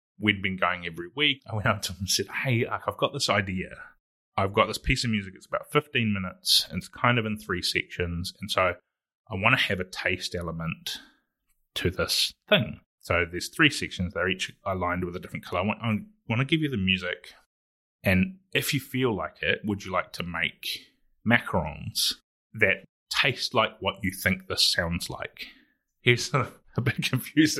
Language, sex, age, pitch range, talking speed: English, male, 30-49, 90-110 Hz, 200 wpm